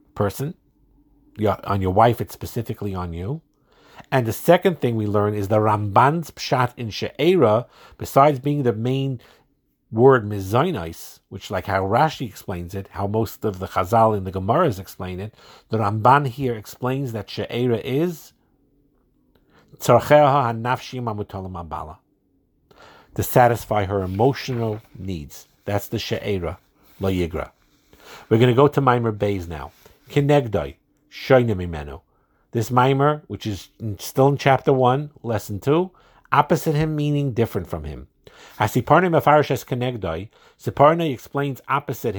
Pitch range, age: 100-140 Hz, 50-69